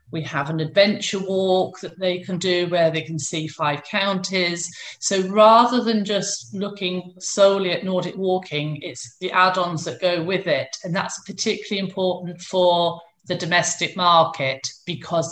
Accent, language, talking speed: British, English, 155 wpm